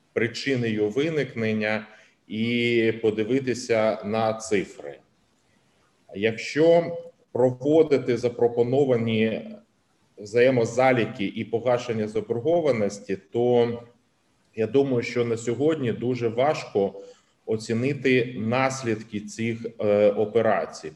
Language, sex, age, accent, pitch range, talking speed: Ukrainian, male, 30-49, native, 105-120 Hz, 70 wpm